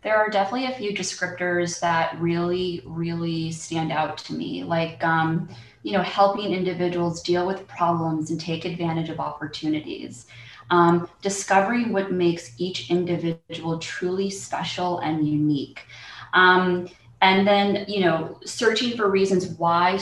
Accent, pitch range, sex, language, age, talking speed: American, 160-185 Hz, female, English, 20-39, 140 wpm